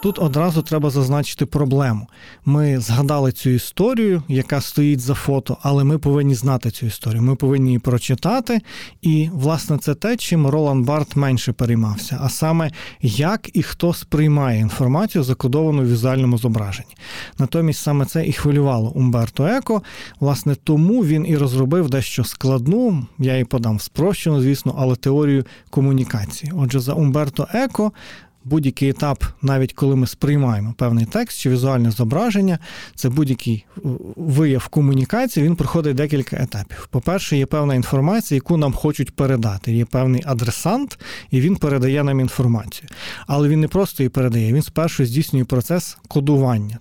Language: Ukrainian